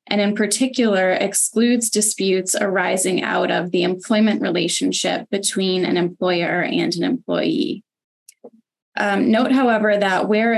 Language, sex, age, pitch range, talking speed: English, female, 10-29, 185-215 Hz, 125 wpm